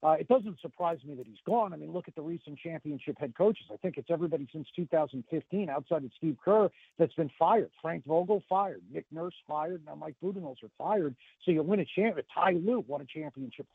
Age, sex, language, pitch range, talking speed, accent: 50-69, male, English, 150-200 Hz, 225 wpm, American